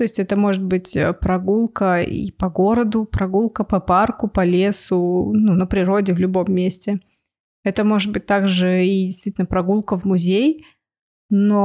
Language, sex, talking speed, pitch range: Russian, female, 155 wpm, 185-220 Hz